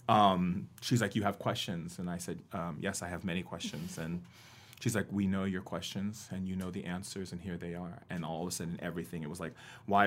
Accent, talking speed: American, 245 wpm